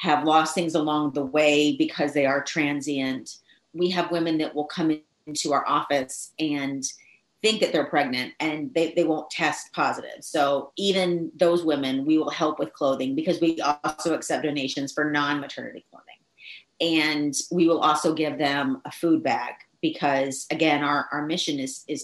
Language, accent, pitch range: English, American, 145-175 Hz